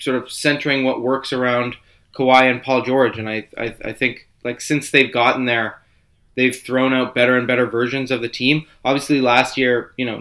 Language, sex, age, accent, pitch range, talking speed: English, male, 20-39, American, 120-135 Hz, 205 wpm